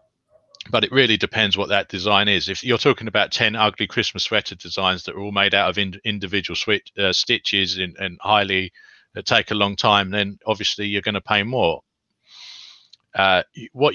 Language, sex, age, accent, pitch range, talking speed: English, male, 40-59, British, 100-125 Hz, 195 wpm